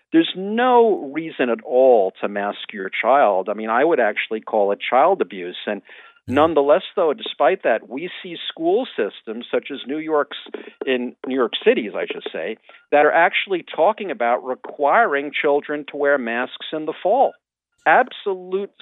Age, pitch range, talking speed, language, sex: 50-69, 130-190 Hz, 165 wpm, English, male